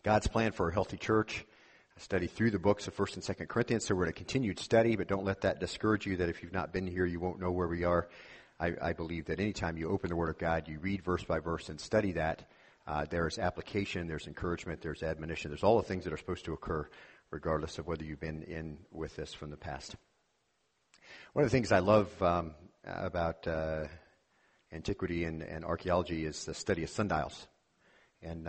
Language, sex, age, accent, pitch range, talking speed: English, male, 40-59, American, 80-100 Hz, 220 wpm